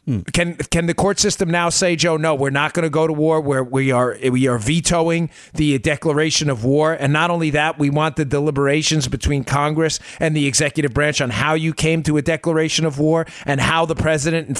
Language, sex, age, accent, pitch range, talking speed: English, male, 40-59, American, 140-185 Hz, 220 wpm